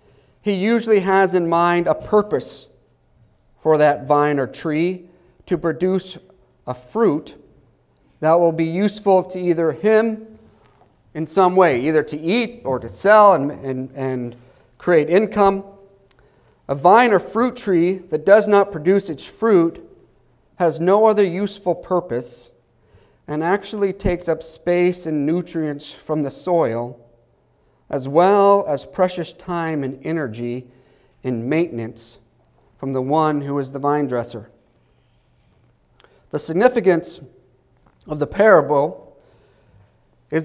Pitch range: 140-190 Hz